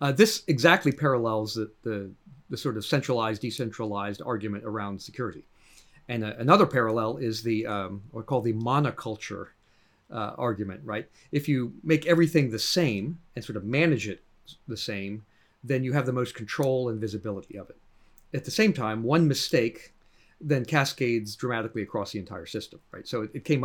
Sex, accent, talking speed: male, American, 175 wpm